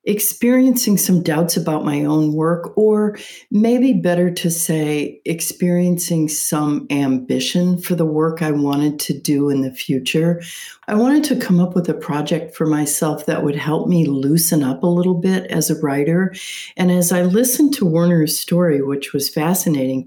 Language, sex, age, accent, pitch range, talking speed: English, female, 60-79, American, 150-185 Hz, 170 wpm